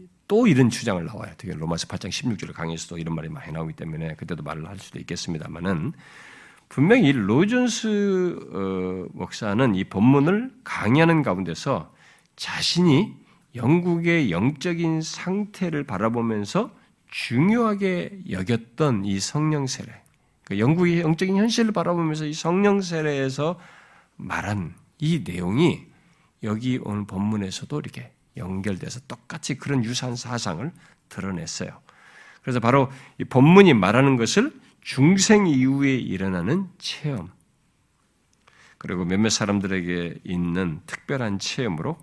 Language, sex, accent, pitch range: Korean, male, native, 100-165 Hz